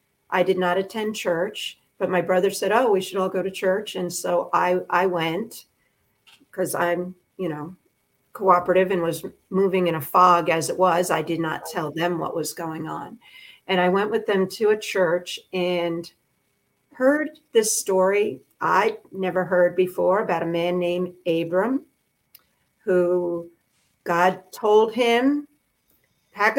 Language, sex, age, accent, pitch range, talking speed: English, female, 50-69, American, 175-215 Hz, 160 wpm